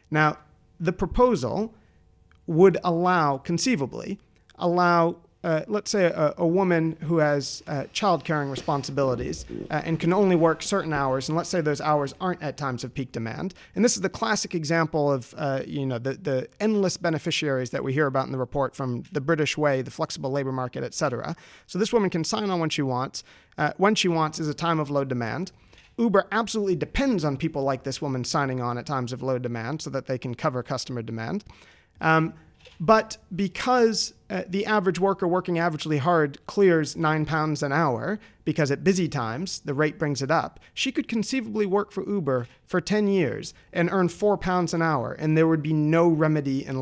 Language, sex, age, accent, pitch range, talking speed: English, male, 40-59, American, 135-185 Hz, 200 wpm